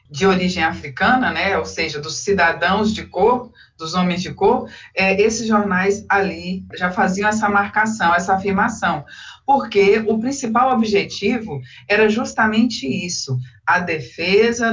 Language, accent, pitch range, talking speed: Portuguese, Brazilian, 175-225 Hz, 130 wpm